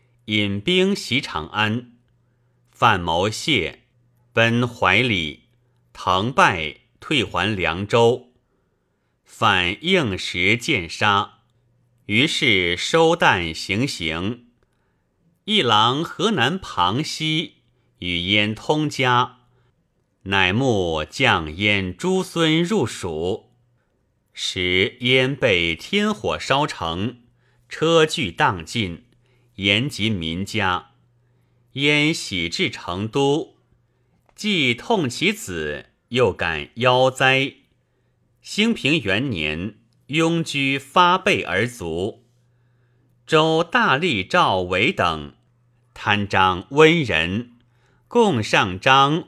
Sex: male